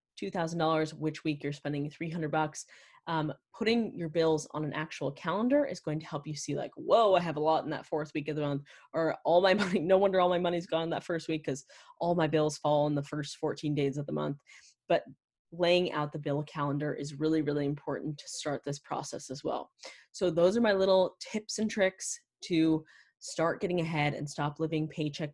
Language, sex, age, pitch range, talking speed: English, female, 20-39, 150-170 Hz, 215 wpm